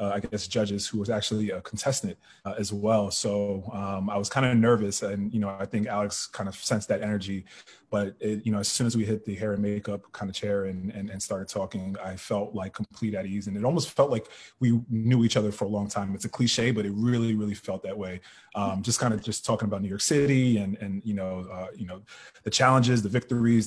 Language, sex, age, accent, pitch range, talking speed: English, male, 30-49, American, 100-110 Hz, 250 wpm